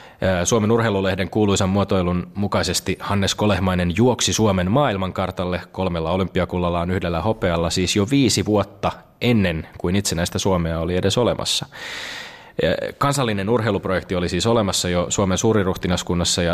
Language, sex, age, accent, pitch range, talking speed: Finnish, male, 20-39, native, 85-105 Hz, 120 wpm